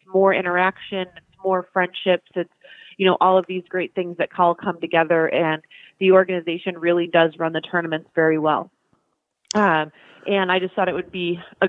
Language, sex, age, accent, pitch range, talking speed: English, female, 30-49, American, 170-190 Hz, 185 wpm